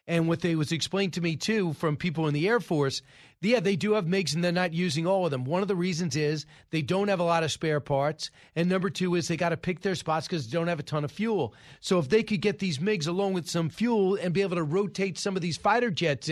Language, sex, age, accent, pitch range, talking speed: English, male, 40-59, American, 150-200 Hz, 285 wpm